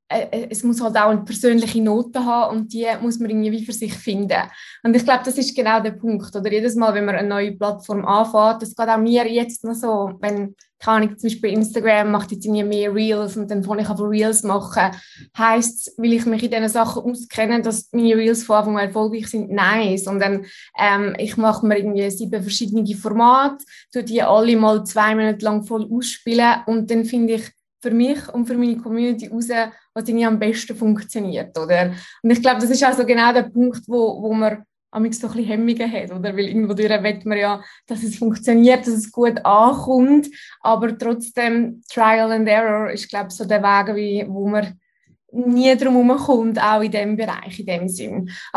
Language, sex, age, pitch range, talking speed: German, female, 20-39, 210-240 Hz, 205 wpm